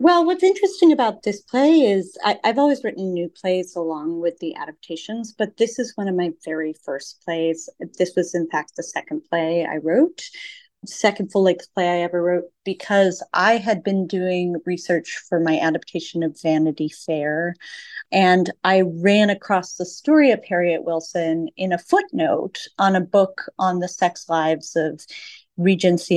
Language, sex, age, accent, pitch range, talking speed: English, female, 30-49, American, 170-235 Hz, 165 wpm